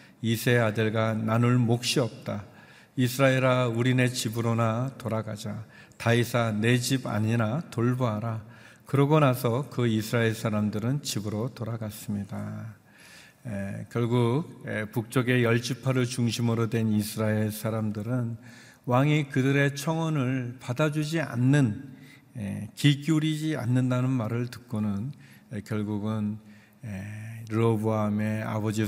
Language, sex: Korean, male